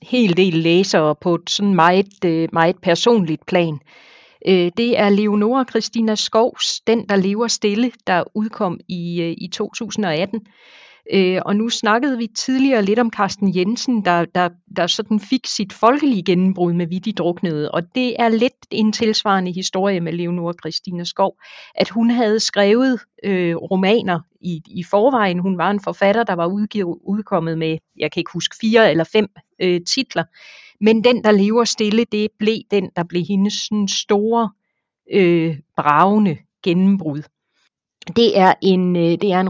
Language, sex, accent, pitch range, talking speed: Danish, female, native, 175-220 Hz, 150 wpm